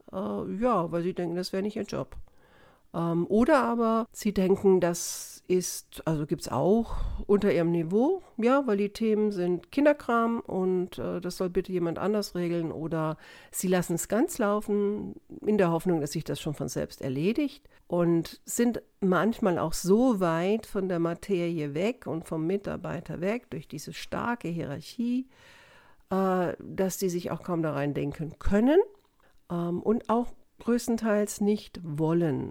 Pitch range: 165-215 Hz